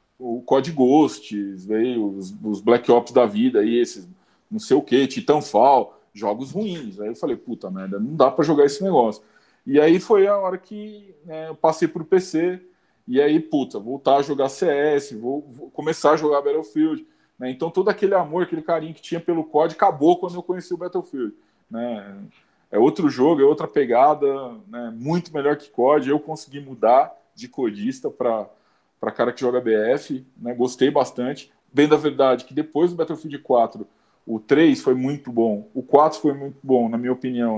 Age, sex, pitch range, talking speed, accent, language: 20-39, male, 125-175 Hz, 185 wpm, Brazilian, Portuguese